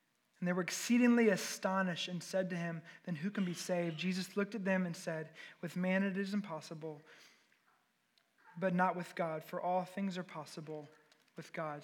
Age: 20-39